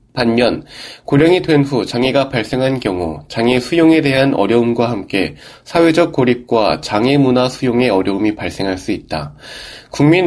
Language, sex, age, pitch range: Korean, male, 20-39, 115-150 Hz